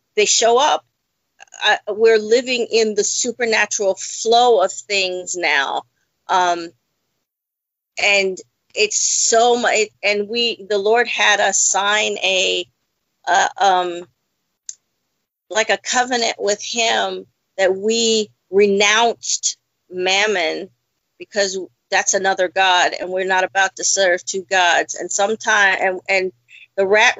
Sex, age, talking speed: female, 40-59, 120 wpm